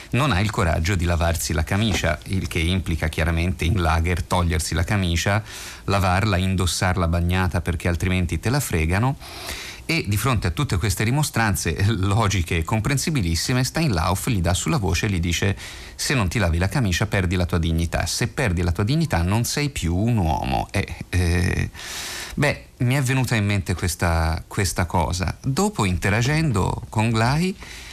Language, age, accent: Italian, 30-49, native